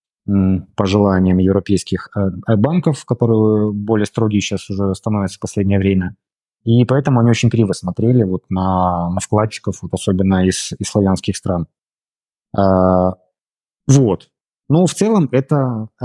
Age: 20-39